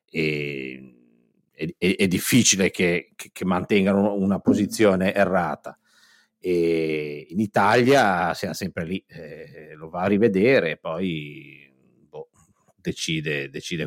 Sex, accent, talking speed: male, native, 105 wpm